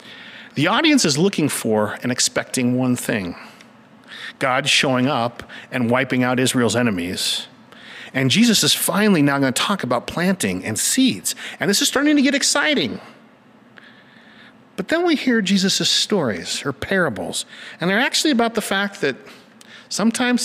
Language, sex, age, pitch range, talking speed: English, male, 50-69, 155-235 Hz, 150 wpm